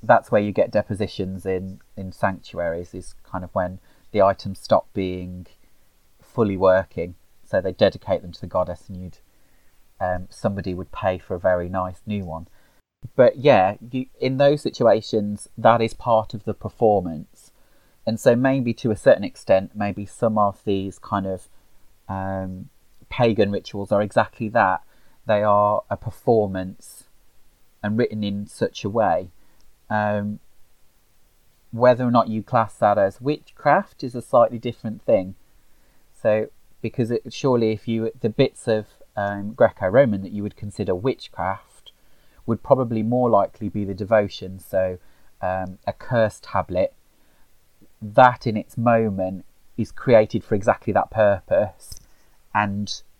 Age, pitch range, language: 30-49, 95-115 Hz, English